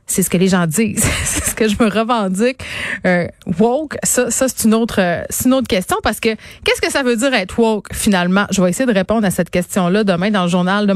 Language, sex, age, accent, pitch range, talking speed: French, female, 30-49, Canadian, 185-230 Hz, 255 wpm